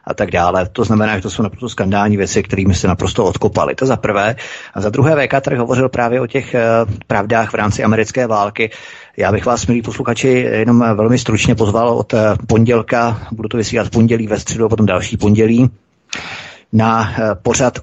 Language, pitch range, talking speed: Czech, 95-115 Hz, 185 wpm